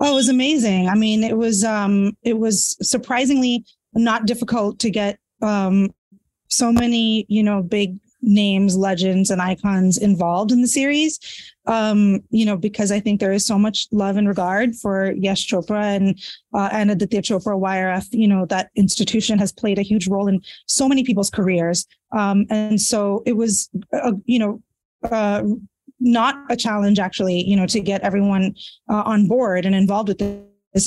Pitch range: 200-235 Hz